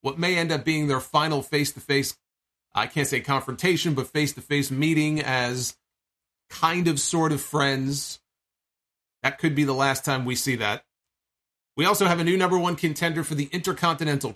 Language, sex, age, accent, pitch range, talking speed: English, male, 40-59, American, 130-165 Hz, 170 wpm